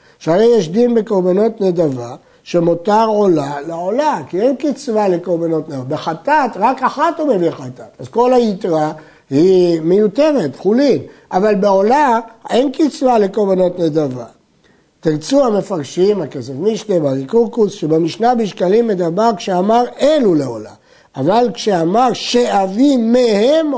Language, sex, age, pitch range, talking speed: Hebrew, male, 60-79, 170-245 Hz, 115 wpm